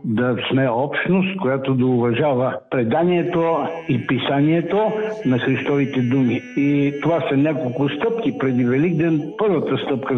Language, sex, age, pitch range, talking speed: Bulgarian, male, 60-79, 130-160 Hz, 125 wpm